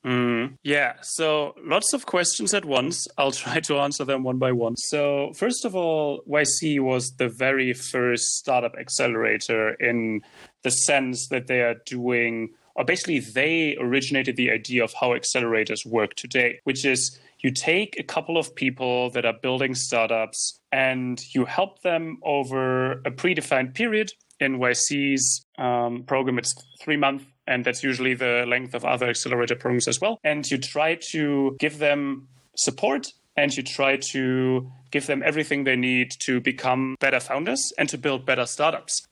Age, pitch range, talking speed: 30-49, 125-145 Hz, 165 wpm